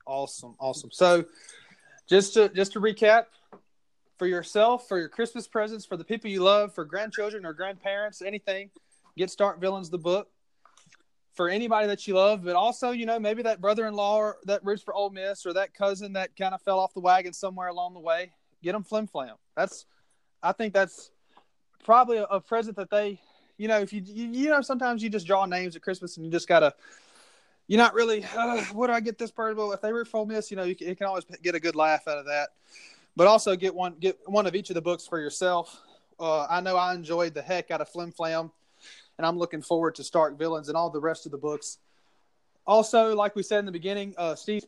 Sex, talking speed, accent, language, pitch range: male, 230 wpm, American, English, 175-210 Hz